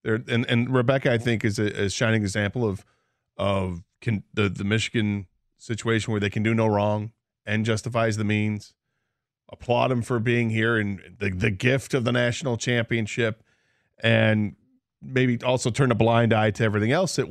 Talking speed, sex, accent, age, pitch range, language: 180 wpm, male, American, 40-59, 100-120 Hz, English